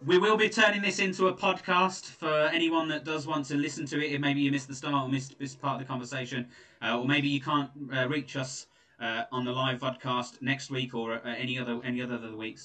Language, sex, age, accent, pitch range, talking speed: English, male, 20-39, British, 120-155 Hz, 240 wpm